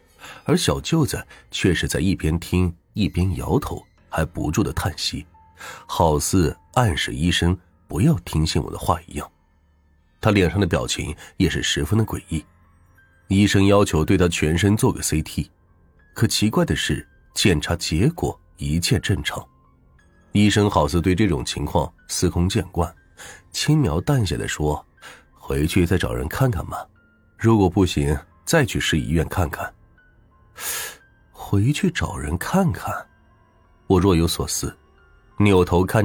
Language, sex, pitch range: Chinese, male, 80-100 Hz